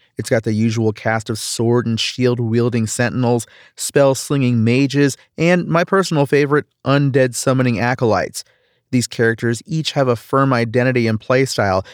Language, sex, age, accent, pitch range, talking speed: English, male, 30-49, American, 115-140 Hz, 140 wpm